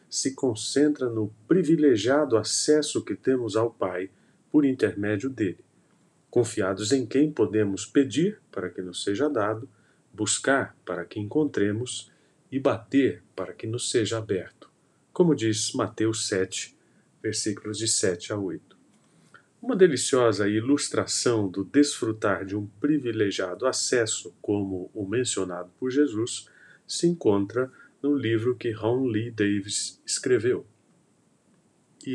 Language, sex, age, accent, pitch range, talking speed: Portuguese, male, 40-59, Brazilian, 105-150 Hz, 125 wpm